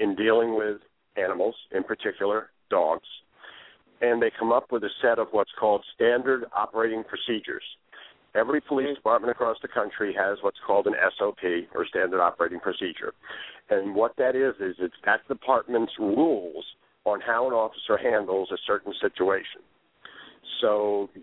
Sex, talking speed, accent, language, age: male, 155 wpm, American, English, 50-69